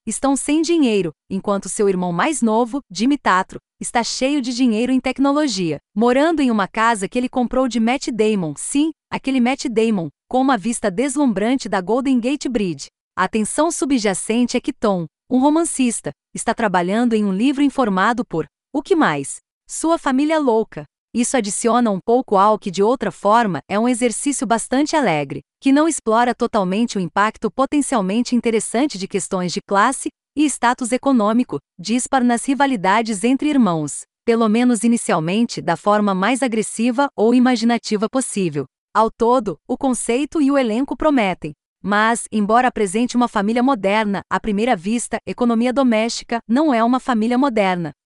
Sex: female